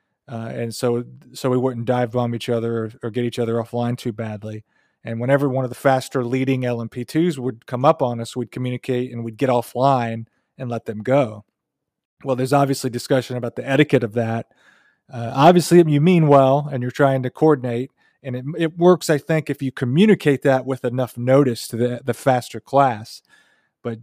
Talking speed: 195 wpm